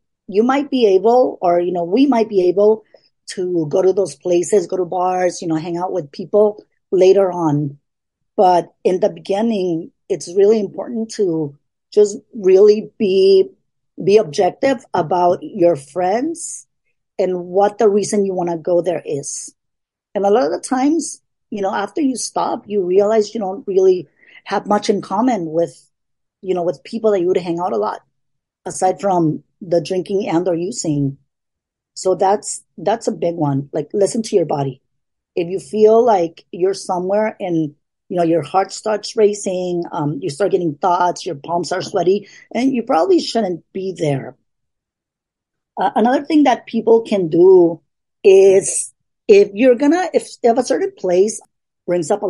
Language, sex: English, female